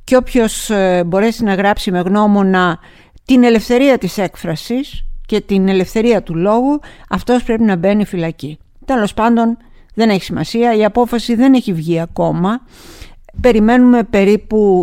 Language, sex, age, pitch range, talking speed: Greek, female, 50-69, 180-235 Hz, 140 wpm